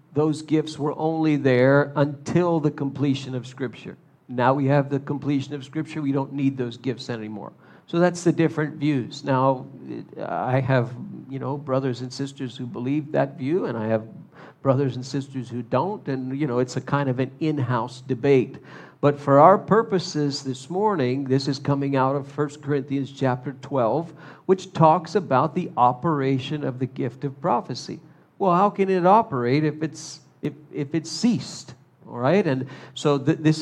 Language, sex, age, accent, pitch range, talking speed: English, male, 50-69, American, 135-155 Hz, 180 wpm